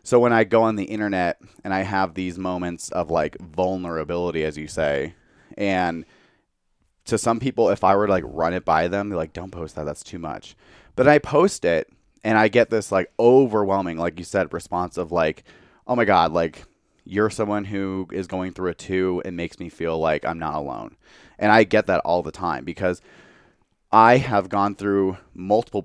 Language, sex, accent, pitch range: English, male, American, 85-105 Hz